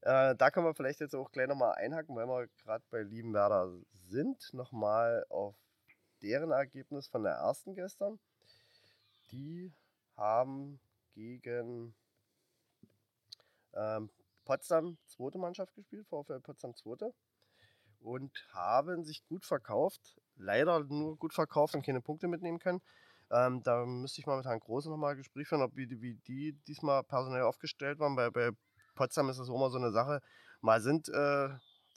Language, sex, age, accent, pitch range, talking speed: German, male, 20-39, German, 115-145 Hz, 150 wpm